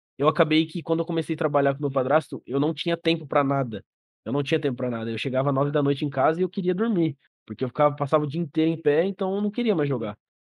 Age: 20-39